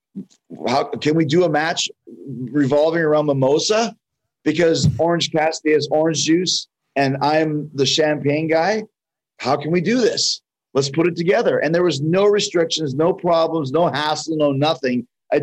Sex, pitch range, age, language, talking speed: male, 140-165 Hz, 30-49, English, 160 wpm